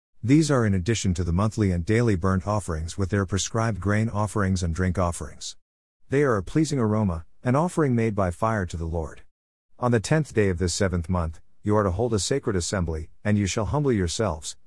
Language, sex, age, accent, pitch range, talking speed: English, male, 50-69, American, 90-120 Hz, 215 wpm